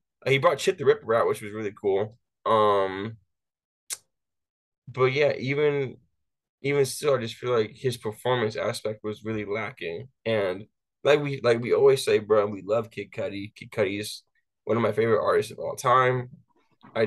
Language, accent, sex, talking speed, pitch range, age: English, American, male, 175 wpm, 110-130 Hz, 20-39